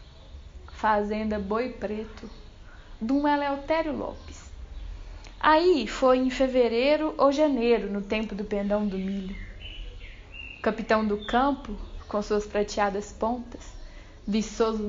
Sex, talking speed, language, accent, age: female, 105 wpm, Portuguese, Brazilian, 10-29